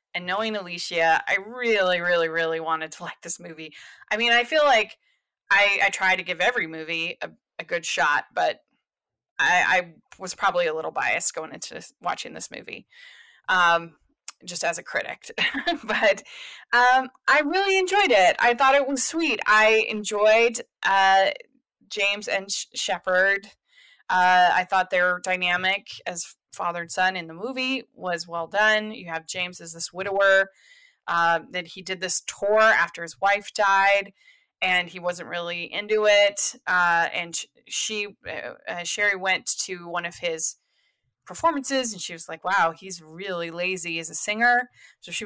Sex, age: female, 20-39